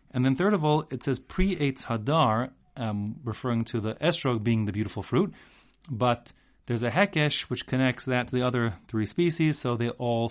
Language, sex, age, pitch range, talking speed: English, male, 30-49, 105-135 Hz, 190 wpm